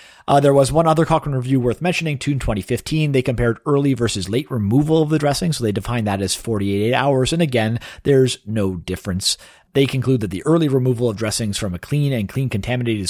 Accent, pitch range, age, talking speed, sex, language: American, 100-140 Hz, 40-59, 210 wpm, male, English